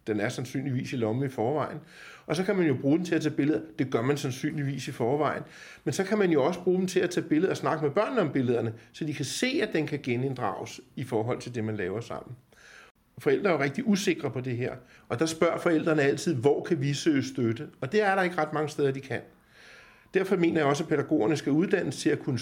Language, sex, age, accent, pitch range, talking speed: Danish, male, 60-79, native, 120-165 Hz, 255 wpm